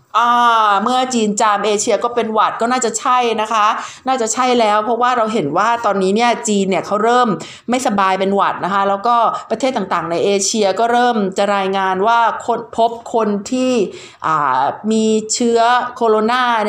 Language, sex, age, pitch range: Thai, female, 30-49, 200-255 Hz